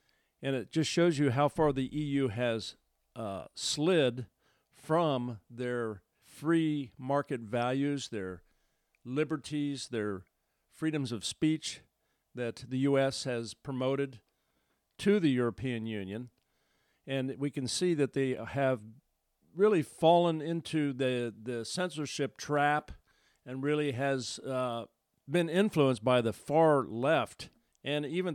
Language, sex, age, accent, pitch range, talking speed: English, male, 50-69, American, 115-145 Hz, 125 wpm